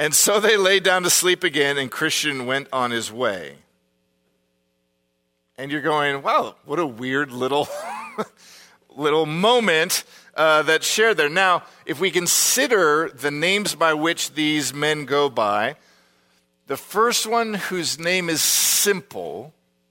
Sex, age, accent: male, 50-69, American